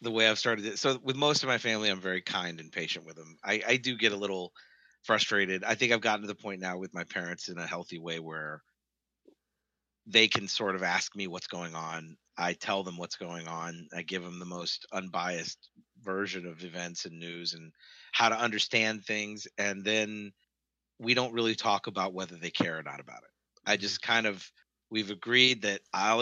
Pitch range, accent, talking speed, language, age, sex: 90-115 Hz, American, 215 wpm, English, 40-59, male